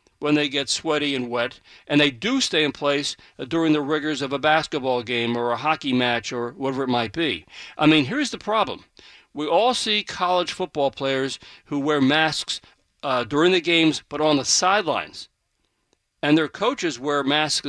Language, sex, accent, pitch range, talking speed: English, male, American, 135-165 Hz, 190 wpm